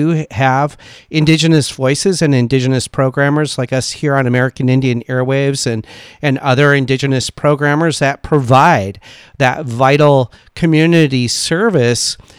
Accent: American